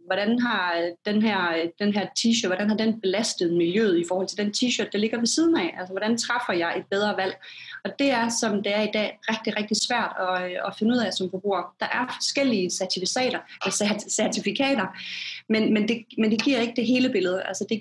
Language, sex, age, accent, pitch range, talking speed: Danish, female, 30-49, native, 185-225 Hz, 220 wpm